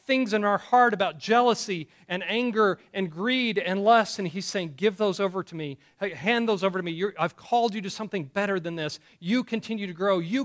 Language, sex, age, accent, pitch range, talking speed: English, male, 40-59, American, 155-210 Hz, 225 wpm